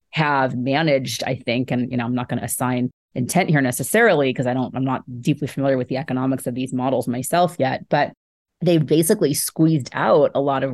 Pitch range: 130-160 Hz